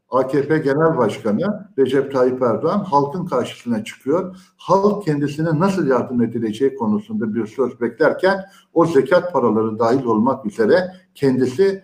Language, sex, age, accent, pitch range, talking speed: Turkish, male, 60-79, native, 125-185 Hz, 125 wpm